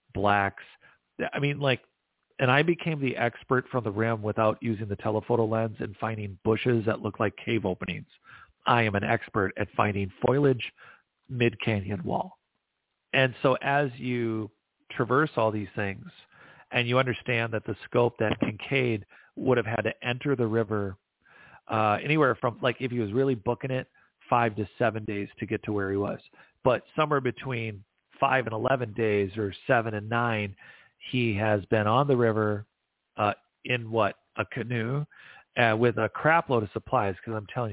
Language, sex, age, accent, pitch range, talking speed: English, male, 40-59, American, 105-125 Hz, 175 wpm